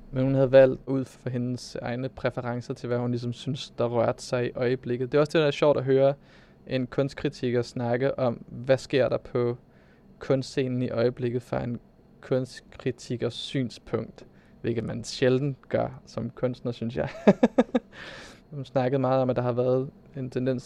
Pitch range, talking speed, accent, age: 125-135 Hz, 175 wpm, native, 20-39